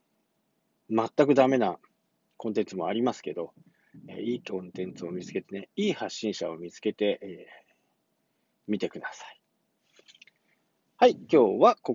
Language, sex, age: Japanese, male, 40-59